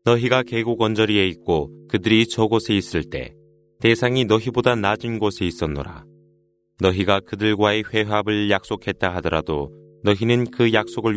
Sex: male